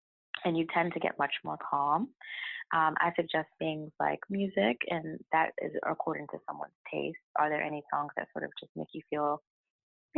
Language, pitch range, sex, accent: English, 145-175 Hz, female, American